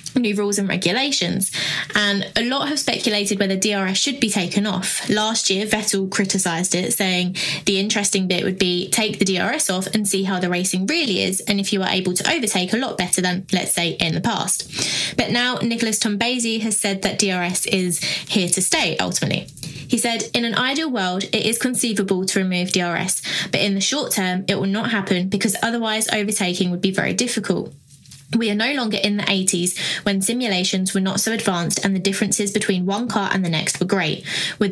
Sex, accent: female, British